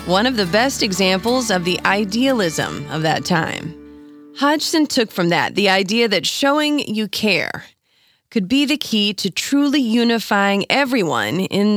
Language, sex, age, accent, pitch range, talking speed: English, female, 30-49, American, 170-230 Hz, 155 wpm